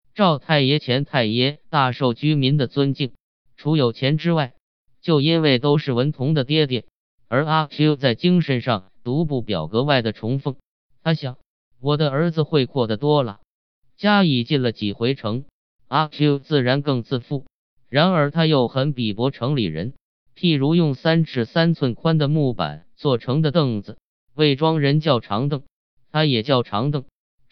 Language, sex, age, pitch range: Chinese, male, 20-39, 125-155 Hz